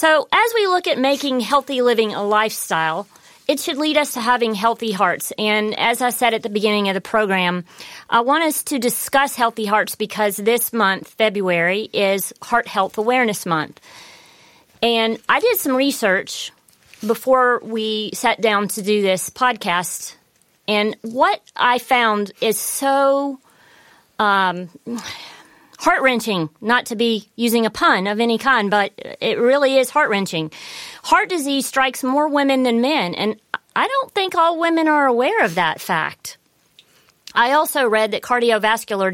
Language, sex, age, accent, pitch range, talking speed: English, female, 40-59, American, 205-265 Hz, 155 wpm